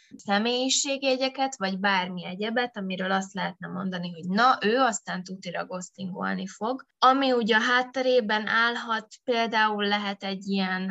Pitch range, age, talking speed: 185-215 Hz, 20-39, 130 wpm